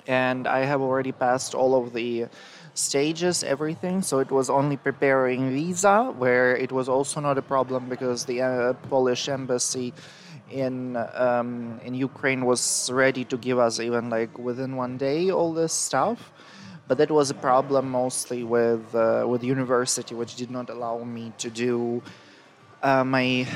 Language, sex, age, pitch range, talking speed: Ukrainian, male, 20-39, 120-140 Hz, 165 wpm